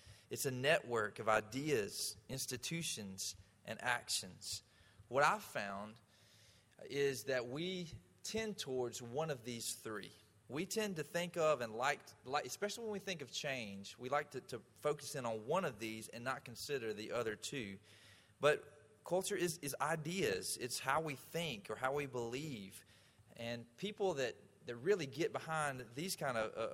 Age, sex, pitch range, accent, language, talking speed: 30-49, male, 110-160 Hz, American, English, 165 wpm